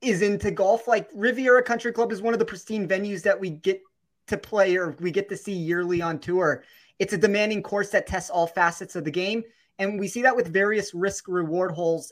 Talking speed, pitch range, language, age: 230 wpm, 170-210 Hz, English, 30-49